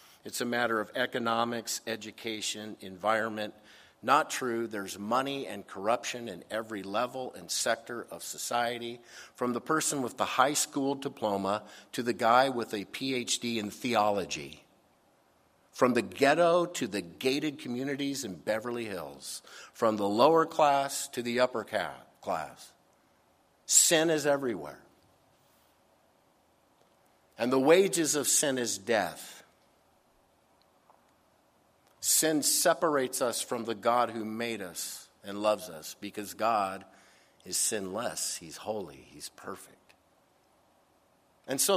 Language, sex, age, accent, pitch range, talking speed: English, male, 50-69, American, 105-130 Hz, 125 wpm